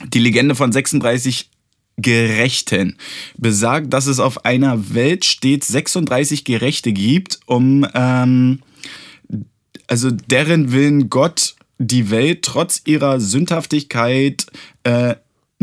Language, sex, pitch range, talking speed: German, male, 125-155 Hz, 105 wpm